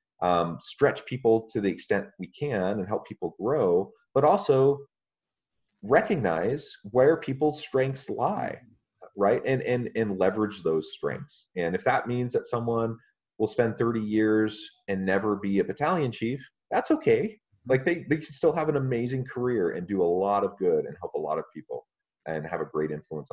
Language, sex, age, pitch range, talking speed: English, male, 30-49, 90-140 Hz, 180 wpm